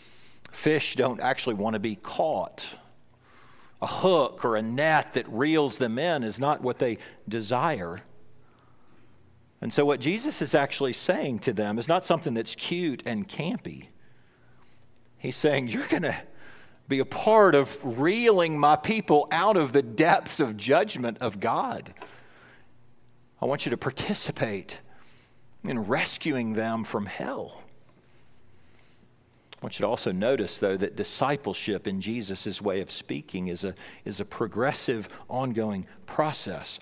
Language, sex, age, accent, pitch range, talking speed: English, male, 40-59, American, 115-160 Hz, 140 wpm